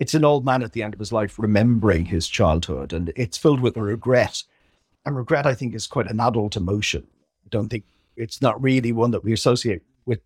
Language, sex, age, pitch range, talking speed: English, male, 50-69, 110-150 Hz, 220 wpm